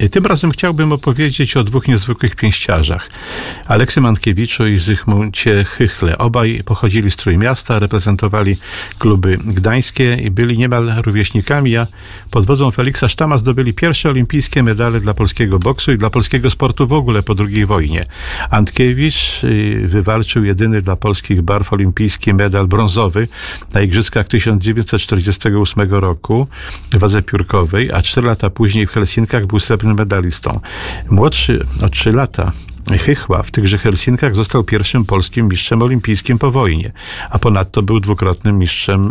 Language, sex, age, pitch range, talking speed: Polish, male, 50-69, 100-125 Hz, 135 wpm